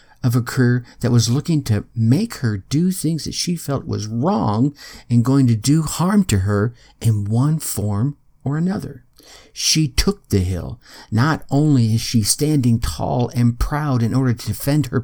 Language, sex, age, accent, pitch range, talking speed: English, male, 50-69, American, 115-160 Hz, 180 wpm